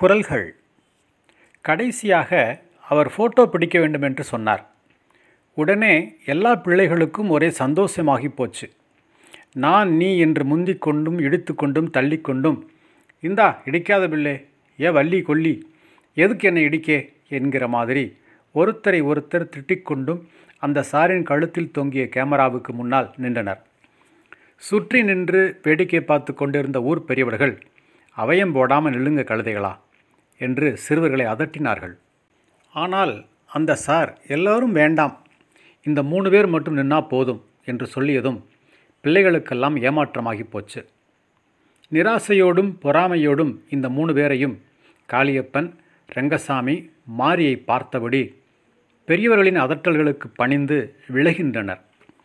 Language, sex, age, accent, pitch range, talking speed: Tamil, male, 40-59, native, 135-175 Hz, 100 wpm